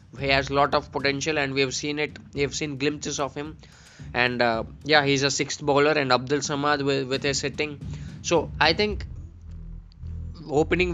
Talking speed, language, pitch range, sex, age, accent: 180 wpm, Telugu, 125-145 Hz, male, 20-39, native